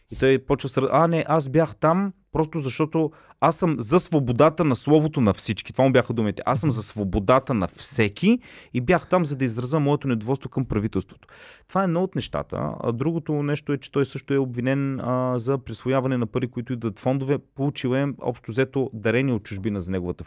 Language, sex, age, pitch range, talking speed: Bulgarian, male, 30-49, 105-145 Hz, 205 wpm